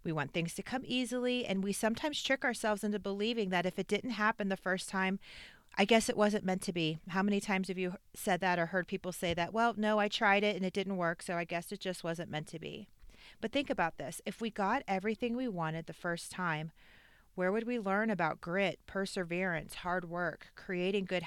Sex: female